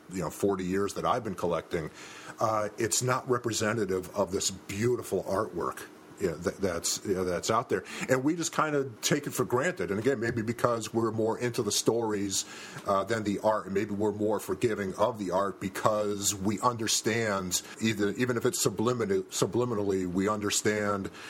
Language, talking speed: English, 185 wpm